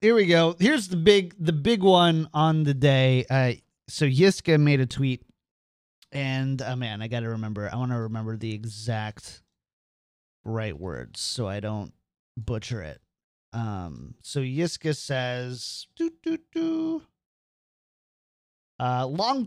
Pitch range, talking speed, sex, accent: 120-160 Hz, 140 wpm, male, American